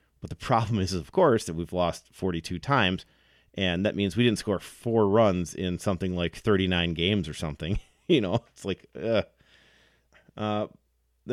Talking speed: 170 wpm